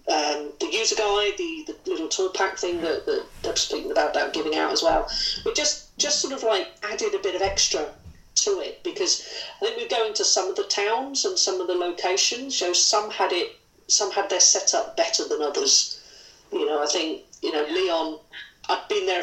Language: English